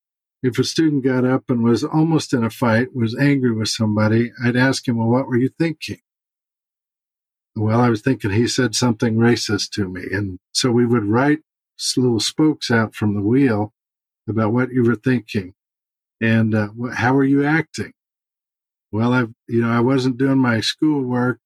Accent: American